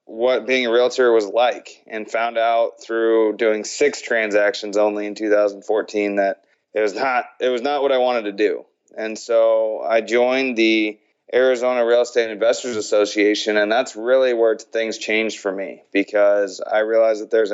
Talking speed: 175 wpm